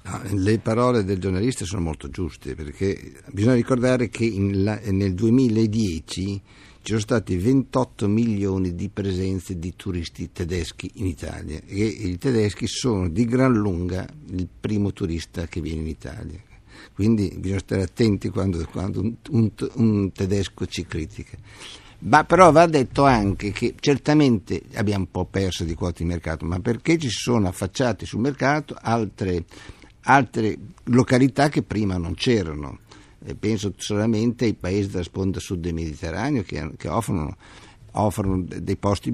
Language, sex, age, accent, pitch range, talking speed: Italian, male, 60-79, native, 95-120 Hz, 145 wpm